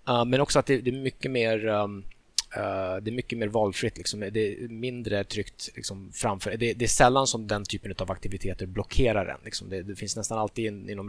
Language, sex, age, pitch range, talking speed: Swedish, male, 20-39, 95-120 Hz, 190 wpm